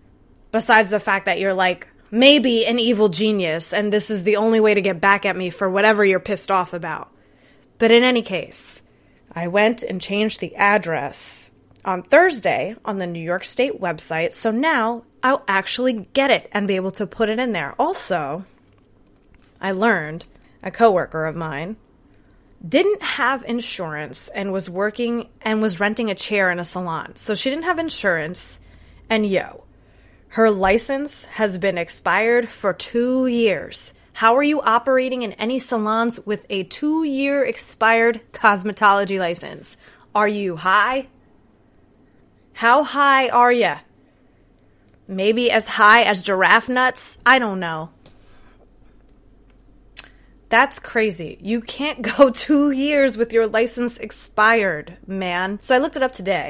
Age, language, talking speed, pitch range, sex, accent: 20-39, English, 150 wpm, 190-240 Hz, female, American